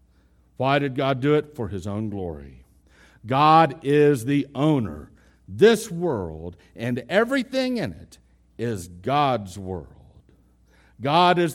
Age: 60-79